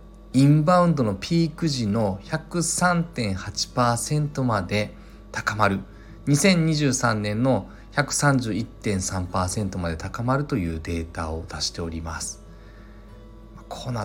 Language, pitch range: Japanese, 95-130 Hz